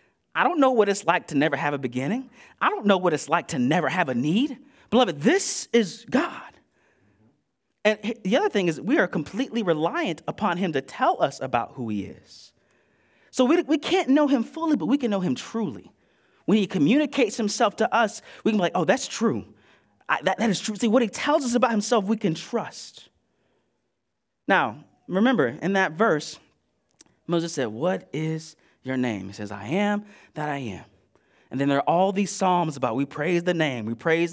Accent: American